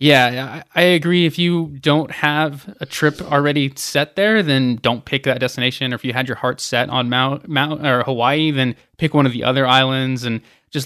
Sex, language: male, English